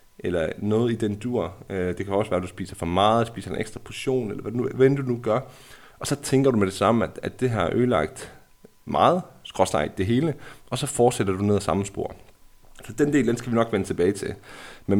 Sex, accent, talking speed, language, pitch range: male, native, 245 wpm, Danish, 105-130 Hz